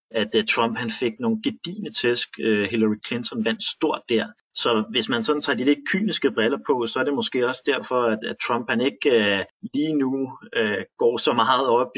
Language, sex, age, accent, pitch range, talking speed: Danish, male, 30-49, native, 105-135 Hz, 180 wpm